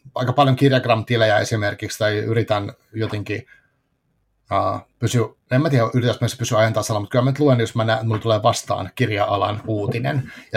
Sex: male